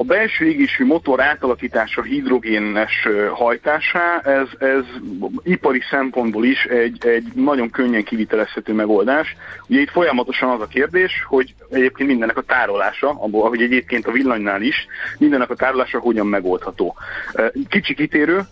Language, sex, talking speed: Hungarian, male, 135 wpm